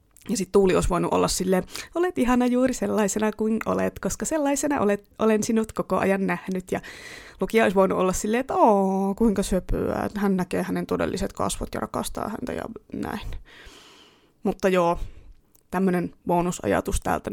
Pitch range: 185-215 Hz